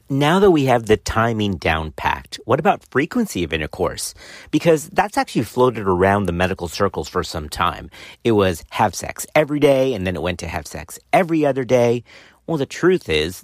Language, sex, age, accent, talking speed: English, male, 40-59, American, 195 wpm